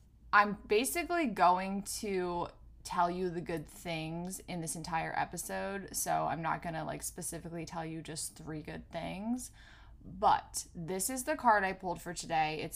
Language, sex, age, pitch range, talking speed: English, female, 20-39, 160-205 Hz, 170 wpm